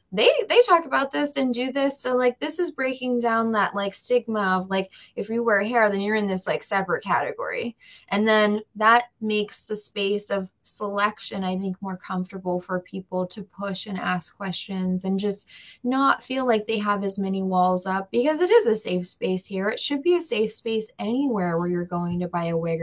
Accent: American